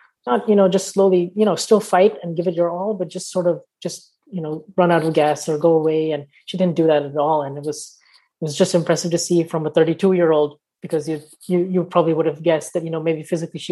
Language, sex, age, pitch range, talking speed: English, female, 20-39, 150-175 Hz, 260 wpm